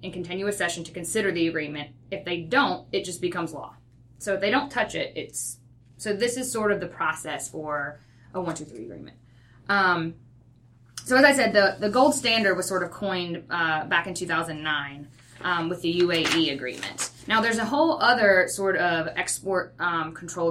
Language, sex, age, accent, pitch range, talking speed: English, female, 10-29, American, 150-195 Hz, 185 wpm